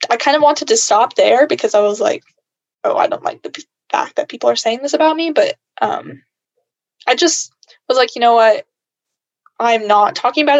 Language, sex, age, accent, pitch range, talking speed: English, female, 10-29, American, 205-280 Hz, 215 wpm